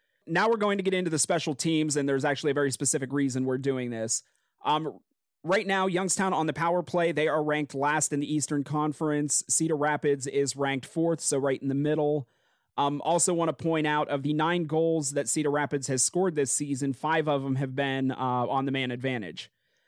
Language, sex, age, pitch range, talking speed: English, male, 30-49, 135-165 Hz, 215 wpm